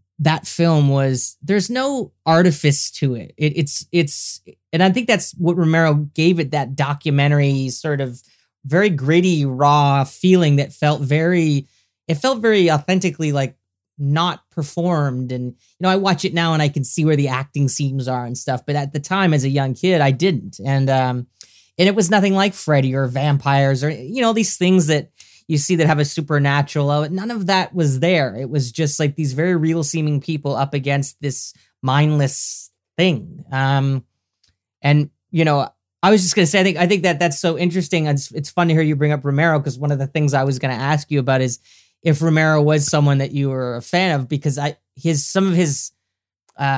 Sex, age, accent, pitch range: male, 20-39, American, 135-170 Hz